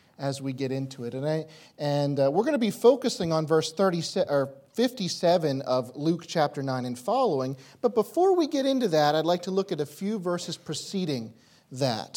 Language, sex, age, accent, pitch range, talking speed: English, male, 40-59, American, 135-185 Hz, 195 wpm